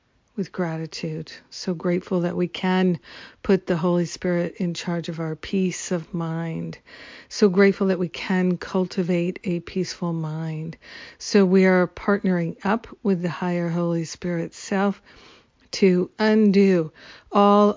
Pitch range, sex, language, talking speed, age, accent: 170-195 Hz, female, English, 140 wpm, 50-69, American